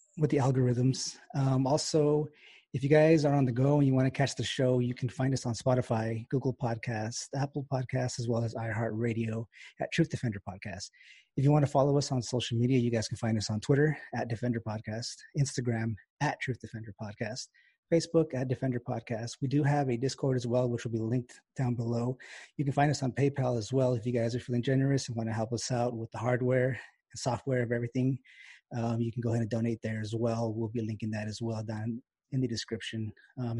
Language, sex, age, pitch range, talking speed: English, male, 30-49, 115-140 Hz, 225 wpm